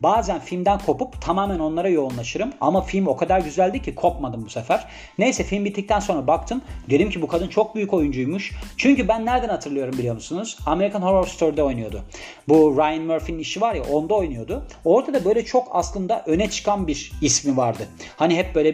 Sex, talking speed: male, 185 wpm